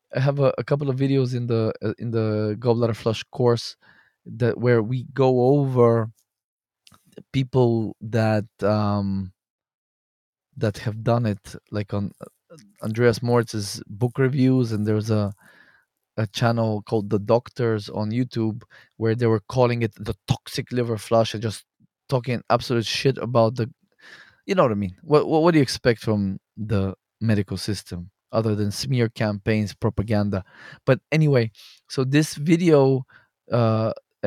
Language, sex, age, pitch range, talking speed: English, male, 20-39, 110-135 Hz, 150 wpm